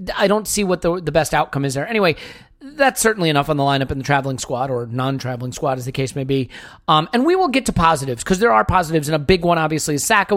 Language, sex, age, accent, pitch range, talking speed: English, male, 40-59, American, 145-190 Hz, 270 wpm